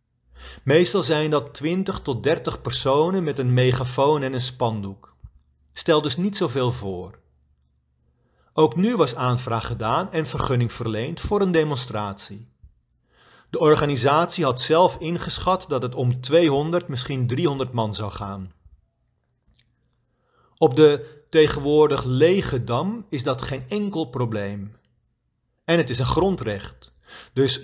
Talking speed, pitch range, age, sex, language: 130 wpm, 115-160 Hz, 40-59, male, Dutch